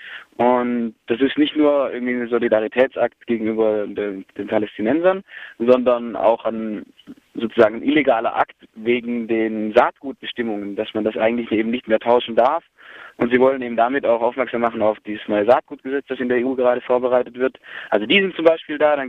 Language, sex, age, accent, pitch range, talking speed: German, male, 20-39, German, 120-150 Hz, 175 wpm